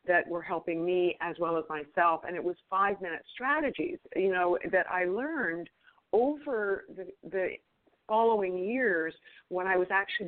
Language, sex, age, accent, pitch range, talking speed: English, female, 50-69, American, 165-195 Hz, 160 wpm